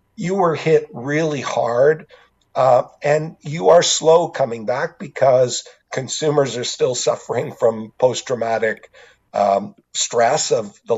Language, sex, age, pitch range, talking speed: English, male, 50-69, 110-140 Hz, 120 wpm